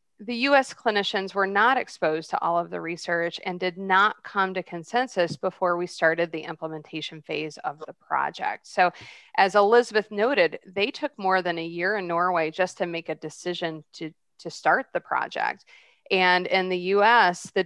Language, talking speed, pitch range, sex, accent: English, 180 wpm, 165-190 Hz, female, American